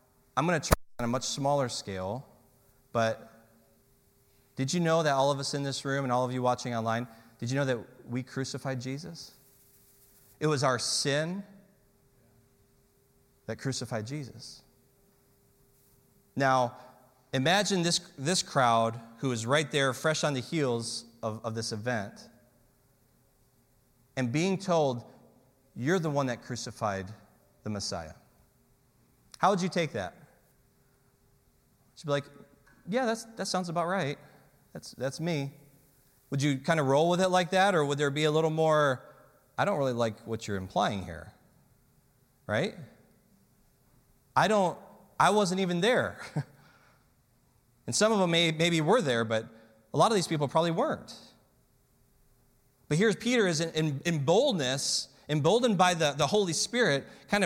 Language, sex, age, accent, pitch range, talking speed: English, male, 30-49, American, 125-160 Hz, 150 wpm